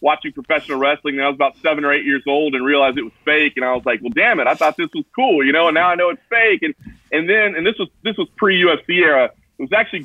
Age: 30-49